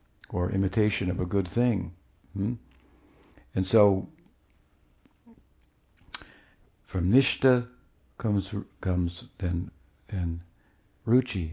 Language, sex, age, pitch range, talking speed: English, male, 60-79, 90-105 Hz, 85 wpm